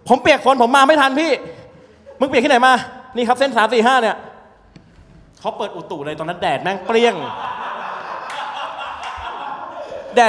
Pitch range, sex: 145-215 Hz, male